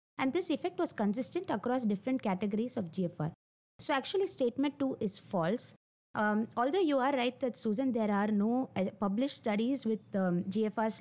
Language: English